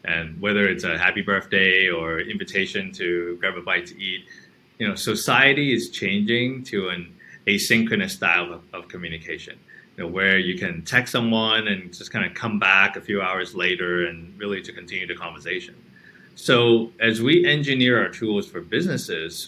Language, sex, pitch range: English, male, 95-145 Hz